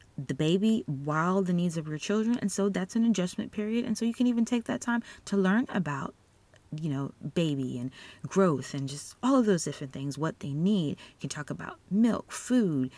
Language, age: English, 30-49